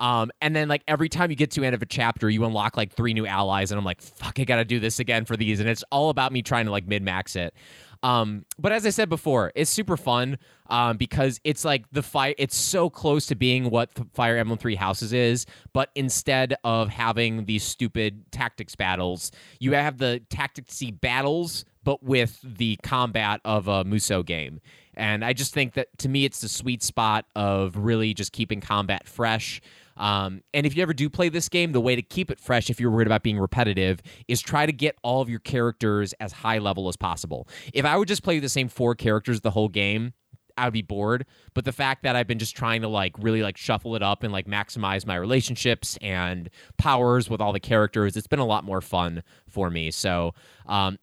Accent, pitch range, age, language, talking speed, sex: American, 105-135 Hz, 20-39, English, 225 wpm, male